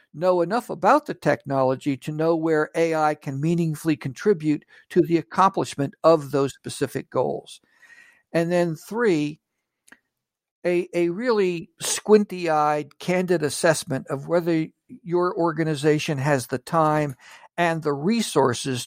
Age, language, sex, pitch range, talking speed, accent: 60-79, English, male, 145-185 Hz, 120 wpm, American